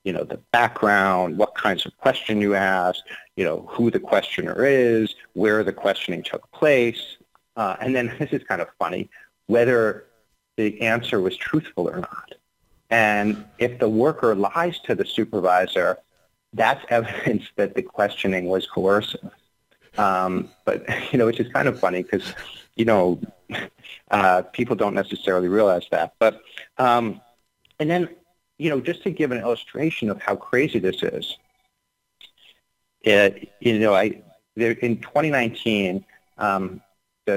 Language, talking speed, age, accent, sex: English, 150 wpm, 40-59, American, male